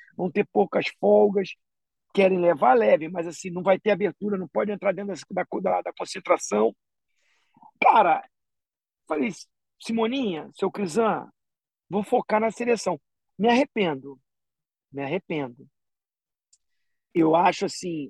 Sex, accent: male, Brazilian